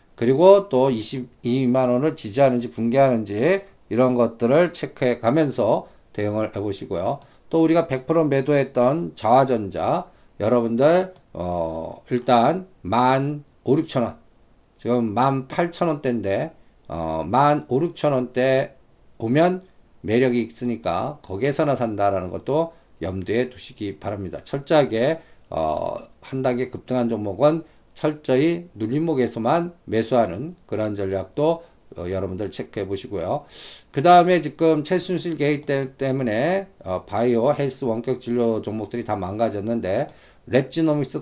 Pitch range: 115-155 Hz